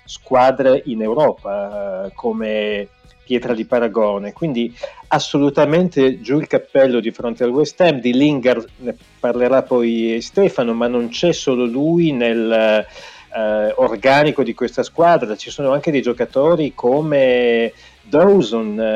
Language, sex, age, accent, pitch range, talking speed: Italian, male, 40-59, native, 115-150 Hz, 130 wpm